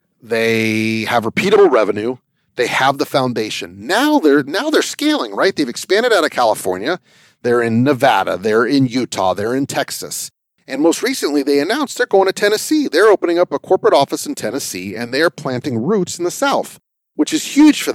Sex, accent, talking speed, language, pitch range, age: male, American, 185 wpm, English, 115-180 Hz, 40-59